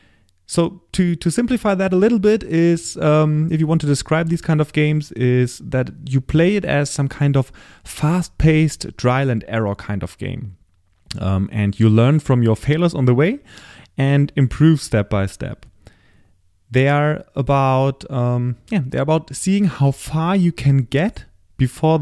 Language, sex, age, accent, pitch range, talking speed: English, male, 30-49, German, 110-150 Hz, 180 wpm